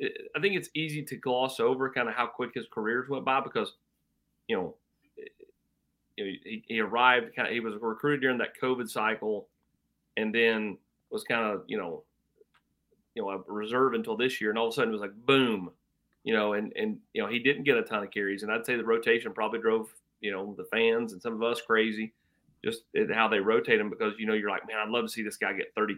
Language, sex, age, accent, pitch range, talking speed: English, male, 30-49, American, 105-145 Hz, 235 wpm